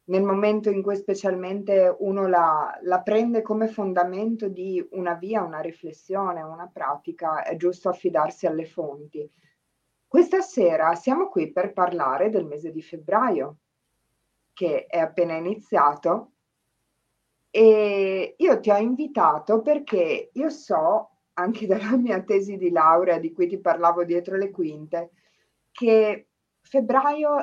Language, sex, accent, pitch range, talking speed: Italian, female, native, 165-210 Hz, 130 wpm